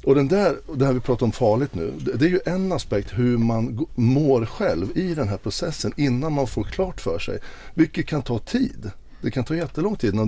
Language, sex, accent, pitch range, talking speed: Swedish, male, native, 105-135 Hz, 230 wpm